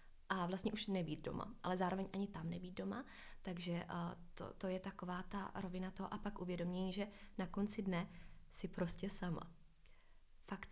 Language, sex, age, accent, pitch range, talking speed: Czech, female, 20-39, native, 175-195 Hz, 170 wpm